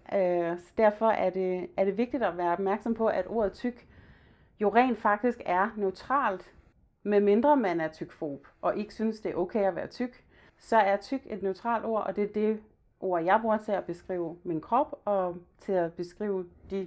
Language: Danish